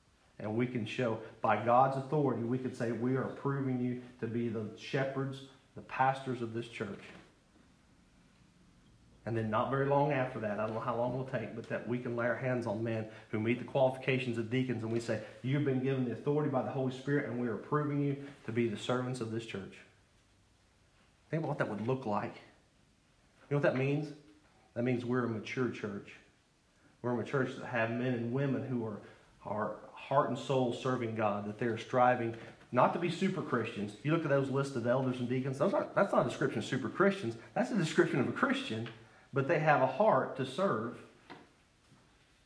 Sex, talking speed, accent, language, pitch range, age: male, 205 wpm, American, English, 115-135 Hz, 40-59